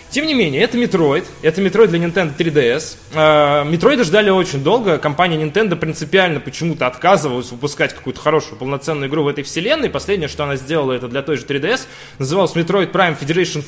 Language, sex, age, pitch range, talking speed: Russian, male, 20-39, 150-200 Hz, 180 wpm